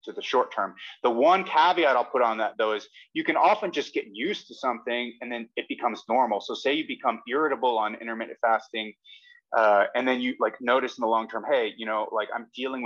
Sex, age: male, 30-49